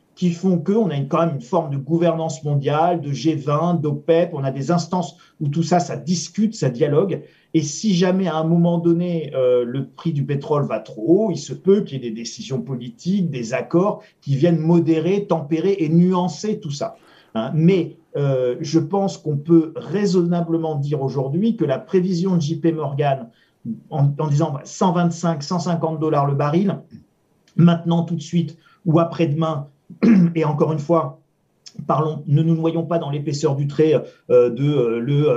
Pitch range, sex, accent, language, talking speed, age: 145-175 Hz, male, French, French, 185 wpm, 40-59